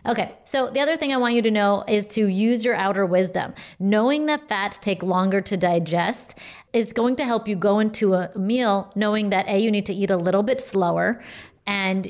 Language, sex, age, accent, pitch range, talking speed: English, female, 30-49, American, 185-220 Hz, 220 wpm